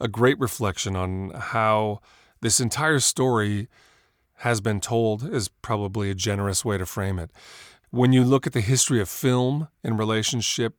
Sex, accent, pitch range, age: male, American, 100-125 Hz, 30-49